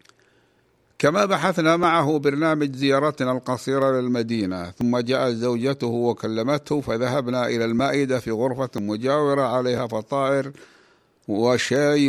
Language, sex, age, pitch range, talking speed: Arabic, male, 60-79, 120-140 Hz, 100 wpm